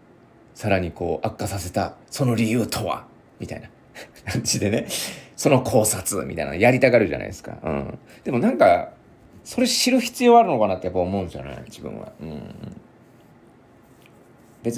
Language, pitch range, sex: Japanese, 90-115 Hz, male